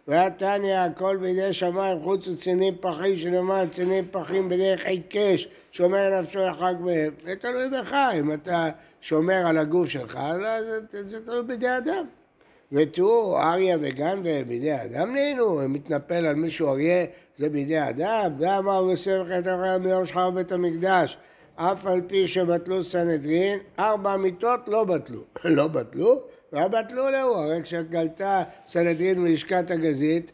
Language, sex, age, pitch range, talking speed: Hebrew, male, 60-79, 165-210 Hz, 145 wpm